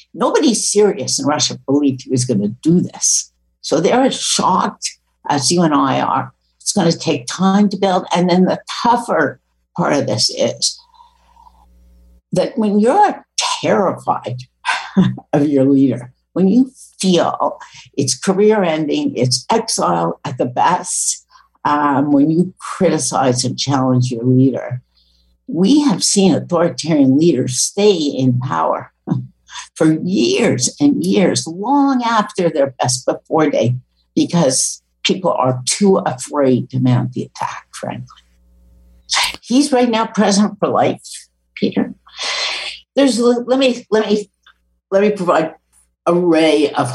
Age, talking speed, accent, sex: 60-79, 135 wpm, American, female